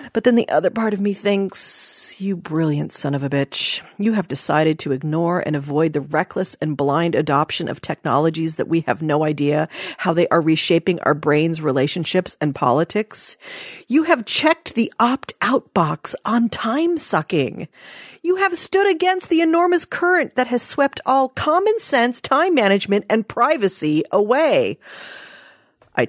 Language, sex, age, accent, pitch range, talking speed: English, female, 40-59, American, 155-225 Hz, 160 wpm